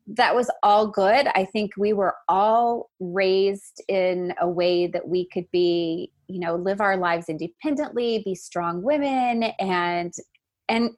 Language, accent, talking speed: English, American, 155 wpm